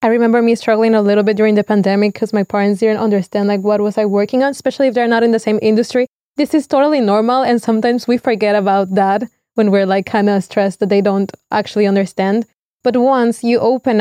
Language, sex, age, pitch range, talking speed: English, female, 20-39, 210-250 Hz, 230 wpm